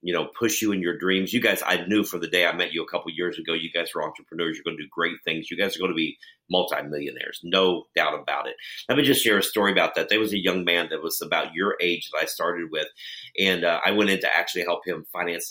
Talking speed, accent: 285 wpm, American